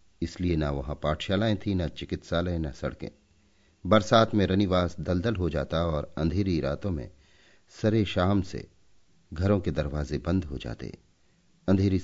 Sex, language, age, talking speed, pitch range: male, Hindi, 50-69, 145 wpm, 80-100 Hz